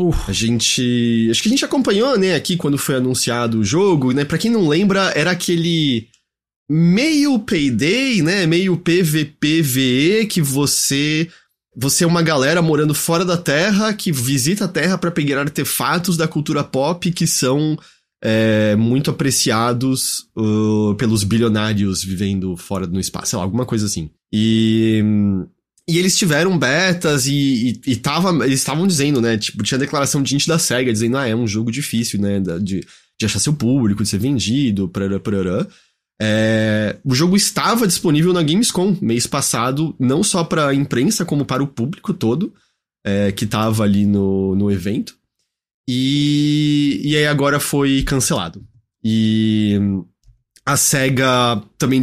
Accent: Brazilian